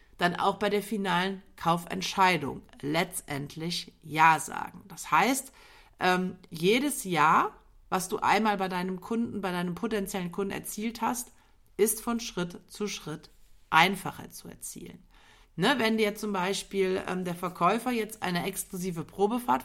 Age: 50-69